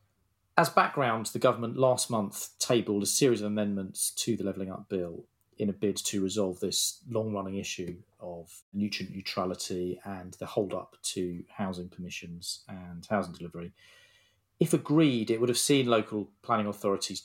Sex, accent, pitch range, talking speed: male, British, 95-115 Hz, 155 wpm